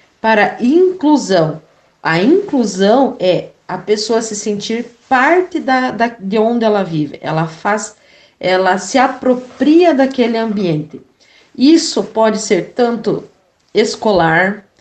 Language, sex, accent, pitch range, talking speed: Portuguese, female, Brazilian, 180-225 Hz, 115 wpm